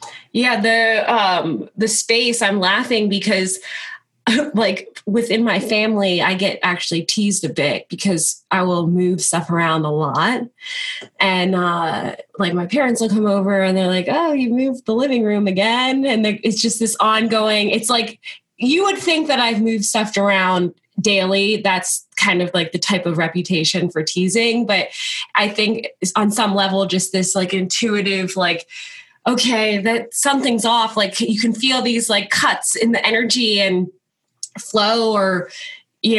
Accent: American